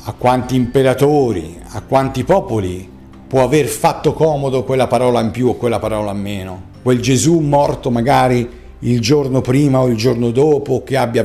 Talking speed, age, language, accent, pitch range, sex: 170 wpm, 50-69, Italian, native, 95-130 Hz, male